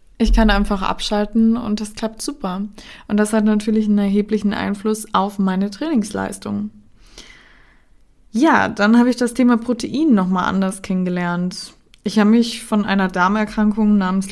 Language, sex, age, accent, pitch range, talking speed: German, female, 20-39, German, 185-215 Hz, 145 wpm